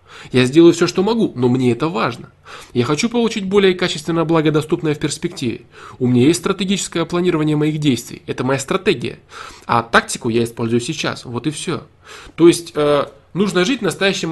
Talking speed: 170 wpm